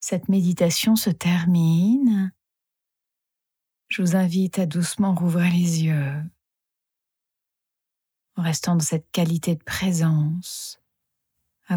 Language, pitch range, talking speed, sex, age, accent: French, 165-205 Hz, 100 wpm, female, 30-49, French